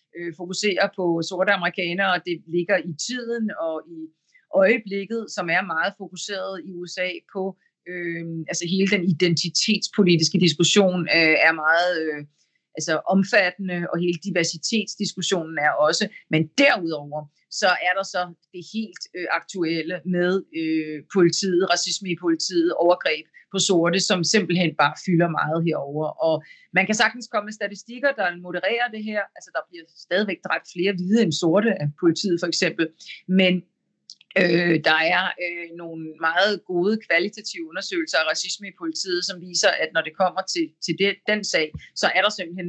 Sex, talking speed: female, 155 wpm